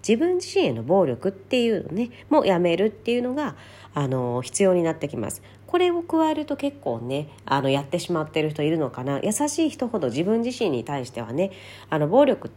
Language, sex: Japanese, female